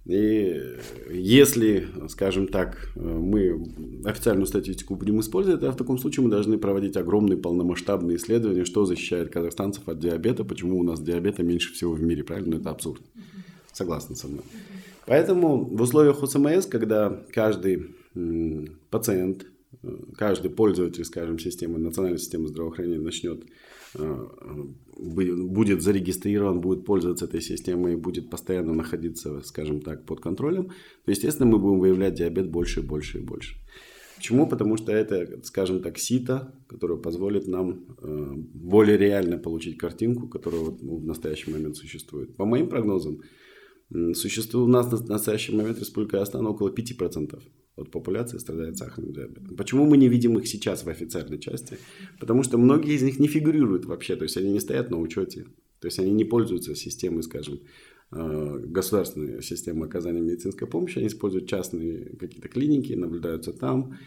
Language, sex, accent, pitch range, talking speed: Russian, male, native, 85-110 Hz, 150 wpm